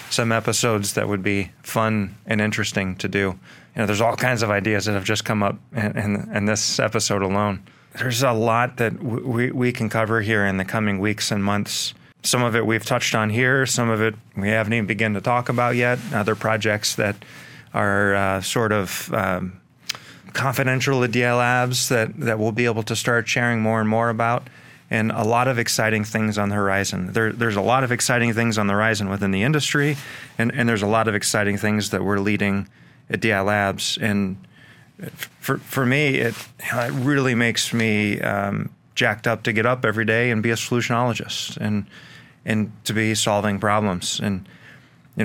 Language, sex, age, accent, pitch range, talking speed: English, male, 20-39, American, 105-120 Hz, 195 wpm